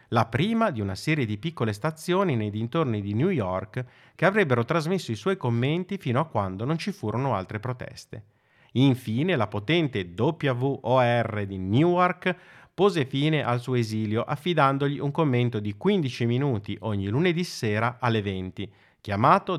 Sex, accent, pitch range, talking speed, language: male, native, 105-155 Hz, 155 wpm, Italian